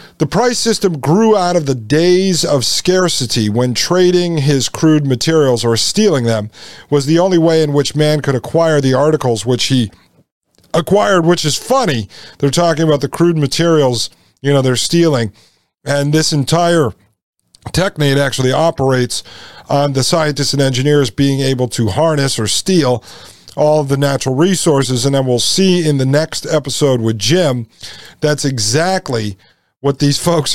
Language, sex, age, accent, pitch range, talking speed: English, male, 40-59, American, 125-165 Hz, 160 wpm